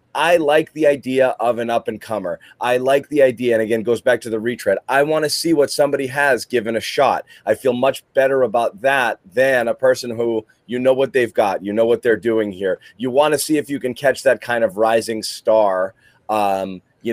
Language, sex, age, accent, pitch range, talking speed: English, male, 30-49, American, 115-140 Hz, 220 wpm